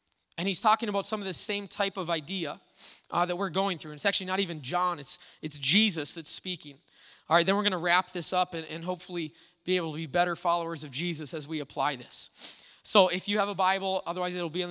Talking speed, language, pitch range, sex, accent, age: 245 wpm, English, 170-200 Hz, male, American, 20-39